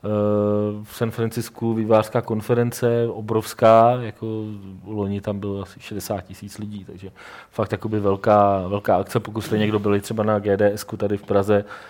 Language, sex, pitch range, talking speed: Czech, male, 95-110 Hz, 150 wpm